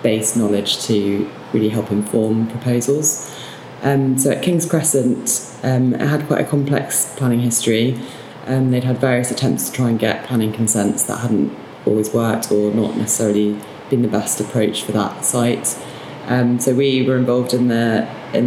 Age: 20-39